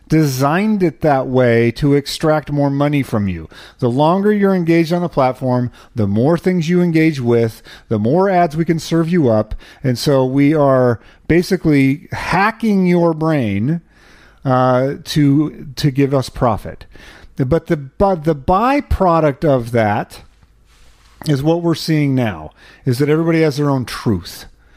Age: 40-59